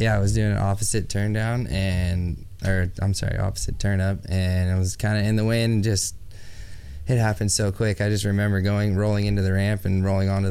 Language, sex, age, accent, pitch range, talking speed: English, male, 20-39, American, 95-105 Hz, 230 wpm